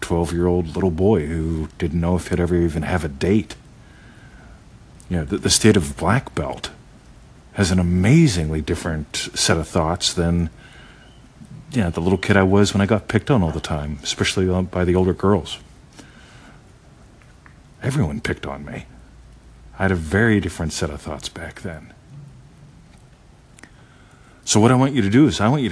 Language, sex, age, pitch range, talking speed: English, male, 50-69, 80-105 Hz, 175 wpm